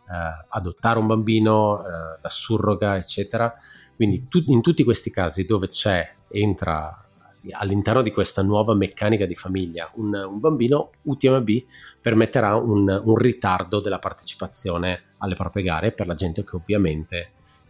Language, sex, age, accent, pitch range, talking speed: Italian, male, 30-49, native, 85-110 Hz, 130 wpm